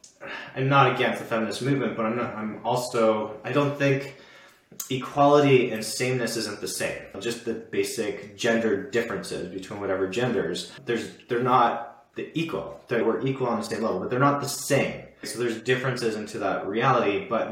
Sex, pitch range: male, 110-130 Hz